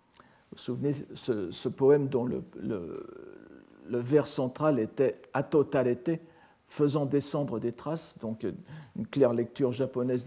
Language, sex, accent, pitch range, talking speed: French, male, French, 130-170 Hz, 135 wpm